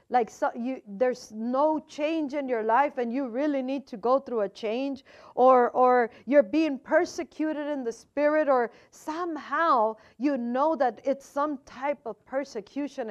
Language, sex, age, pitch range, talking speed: English, female, 50-69, 225-280 Hz, 165 wpm